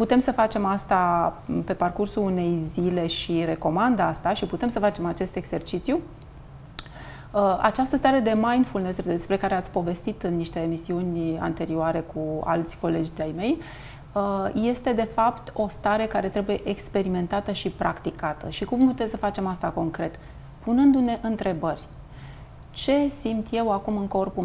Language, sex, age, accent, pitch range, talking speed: Romanian, female, 30-49, native, 175-235 Hz, 145 wpm